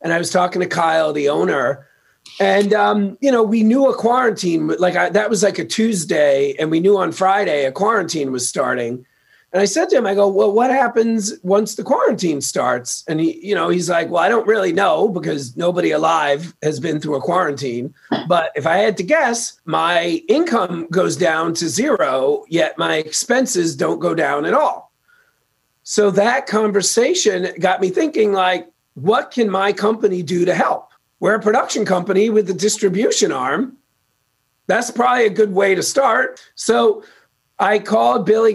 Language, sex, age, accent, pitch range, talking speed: English, male, 40-59, American, 150-210 Hz, 185 wpm